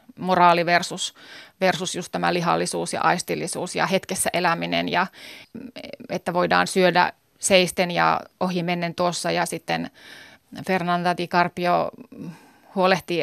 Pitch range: 170-190 Hz